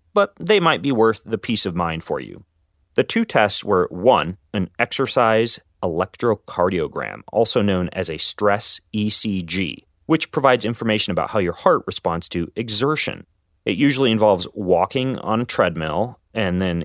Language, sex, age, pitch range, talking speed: English, male, 30-49, 90-125 Hz, 155 wpm